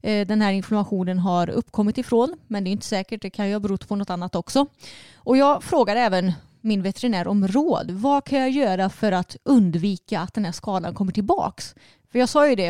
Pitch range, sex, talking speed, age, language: 185-225 Hz, female, 215 wpm, 30-49, Swedish